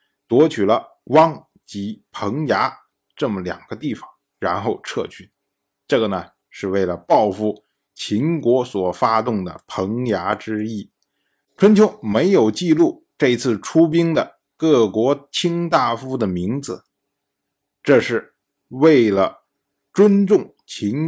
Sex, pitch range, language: male, 105-165 Hz, Chinese